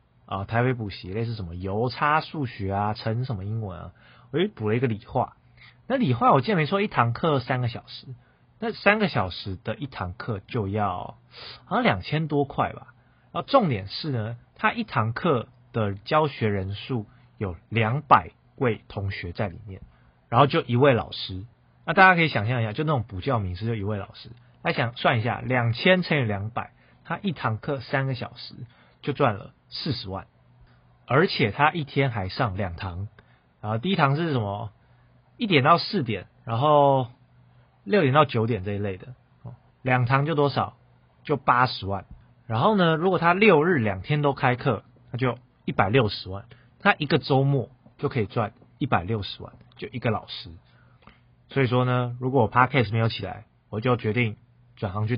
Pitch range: 105-140 Hz